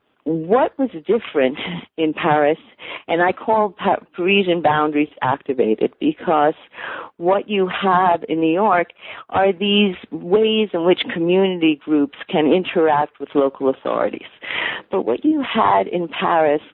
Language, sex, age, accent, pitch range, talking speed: English, female, 50-69, American, 145-185 Hz, 130 wpm